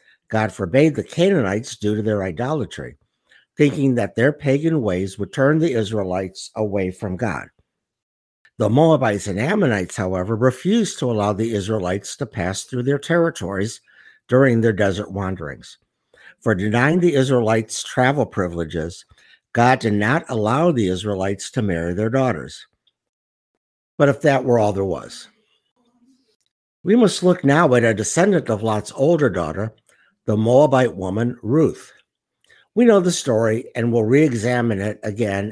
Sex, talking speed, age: male, 145 wpm, 60-79